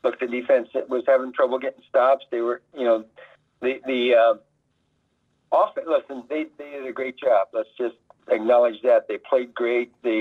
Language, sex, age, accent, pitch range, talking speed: English, male, 50-69, American, 120-140 Hz, 180 wpm